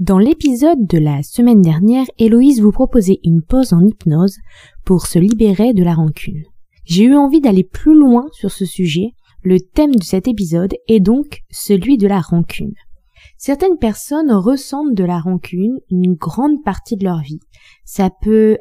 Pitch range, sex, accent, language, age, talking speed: 180-245 Hz, female, French, French, 20-39, 170 wpm